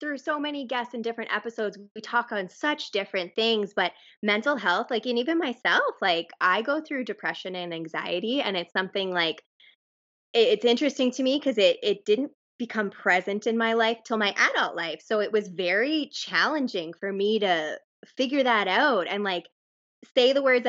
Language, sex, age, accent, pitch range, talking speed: English, female, 20-39, American, 185-250 Hz, 190 wpm